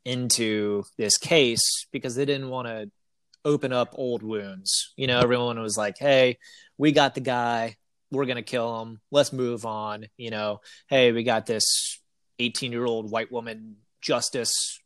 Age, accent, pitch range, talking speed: 30-49, American, 110-135 Hz, 165 wpm